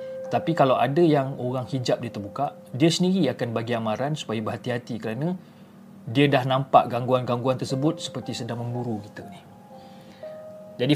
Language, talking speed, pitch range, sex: Malay, 150 wpm, 120-155 Hz, male